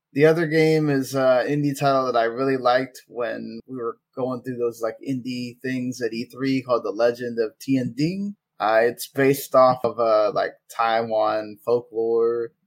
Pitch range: 120-145 Hz